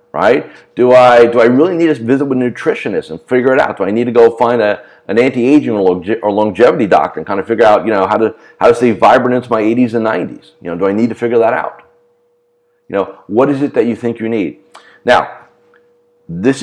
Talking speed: 245 wpm